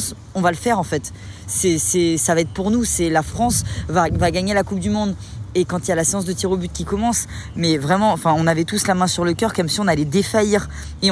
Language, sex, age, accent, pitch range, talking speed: French, female, 20-39, French, 170-225 Hz, 285 wpm